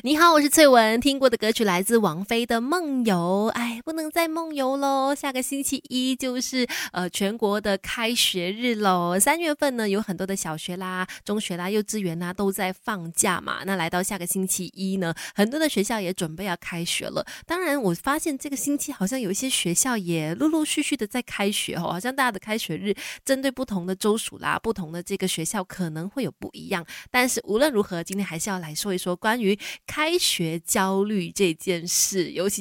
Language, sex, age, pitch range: Chinese, female, 20-39, 185-245 Hz